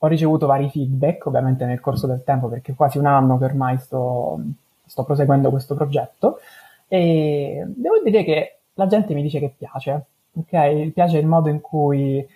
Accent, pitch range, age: native, 135-155 Hz, 20-39